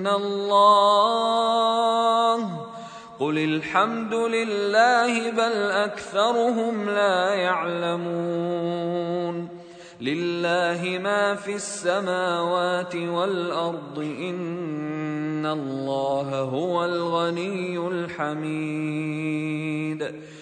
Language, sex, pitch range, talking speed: Arabic, male, 175-230 Hz, 55 wpm